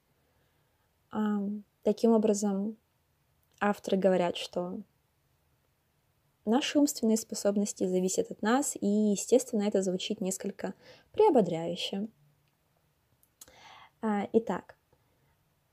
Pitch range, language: 185-220 Hz, Russian